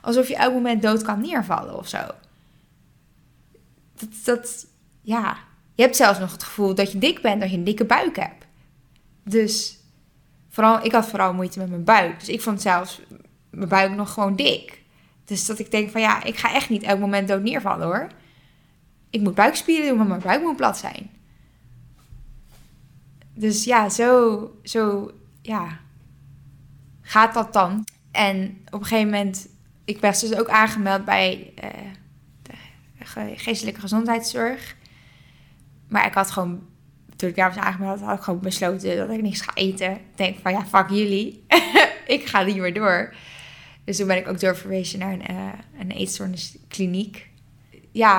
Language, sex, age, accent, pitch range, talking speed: English, female, 20-39, Dutch, 185-220 Hz, 170 wpm